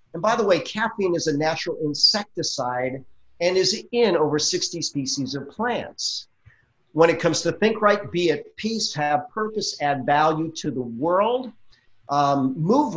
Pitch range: 140-185 Hz